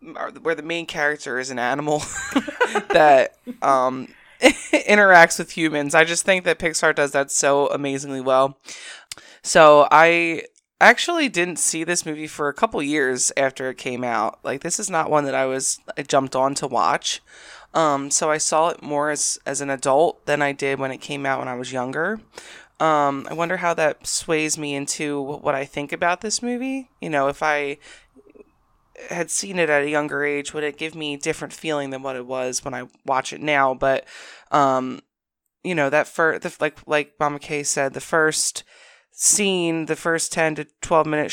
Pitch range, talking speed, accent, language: 135-165 Hz, 195 wpm, American, English